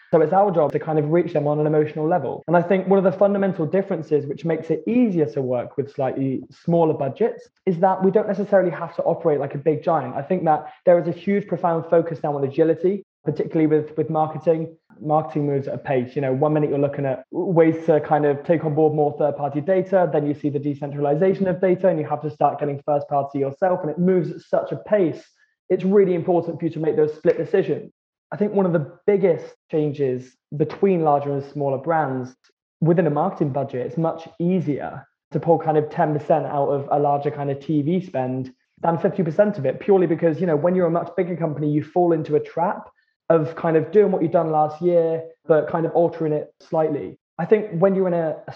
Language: English